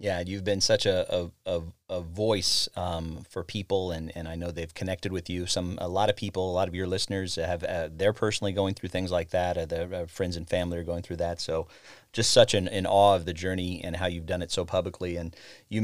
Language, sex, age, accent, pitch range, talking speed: English, male, 30-49, American, 90-105 Hz, 250 wpm